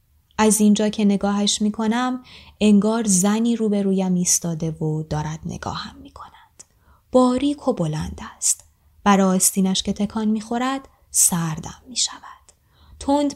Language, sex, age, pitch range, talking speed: Persian, female, 20-39, 165-235 Hz, 130 wpm